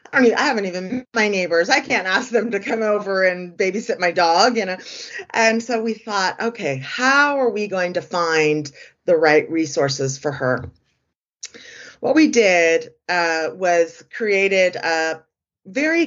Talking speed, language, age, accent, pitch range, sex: 160 wpm, English, 30-49, American, 160-225 Hz, female